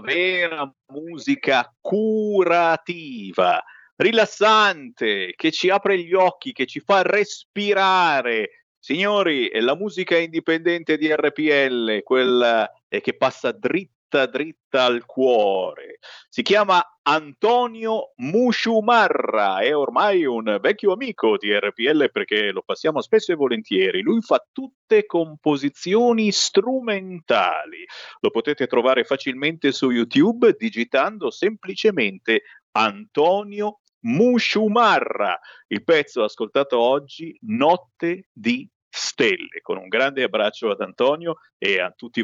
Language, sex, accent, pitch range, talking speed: Italian, male, native, 170-250 Hz, 110 wpm